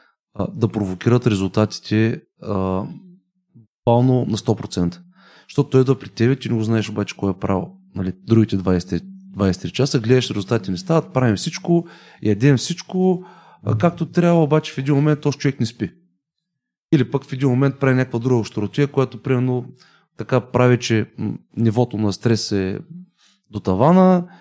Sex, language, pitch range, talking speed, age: male, Bulgarian, 110-150 Hz, 150 wpm, 30-49